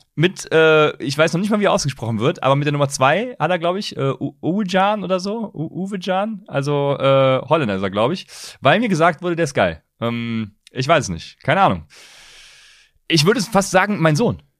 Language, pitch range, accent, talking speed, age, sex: German, 110-165 Hz, German, 215 wpm, 30-49, male